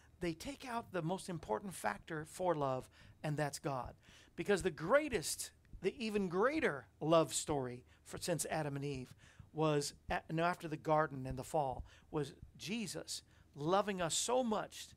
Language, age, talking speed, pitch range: English, 50-69, 165 wpm, 135-190 Hz